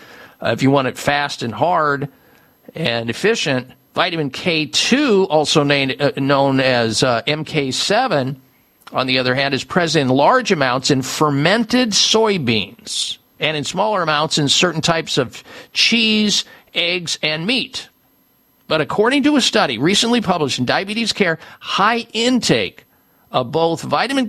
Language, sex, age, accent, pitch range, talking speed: English, male, 50-69, American, 145-205 Hz, 140 wpm